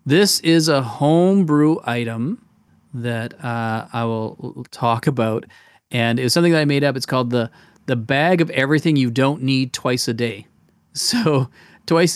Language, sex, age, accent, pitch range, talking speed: English, male, 40-59, American, 120-150 Hz, 165 wpm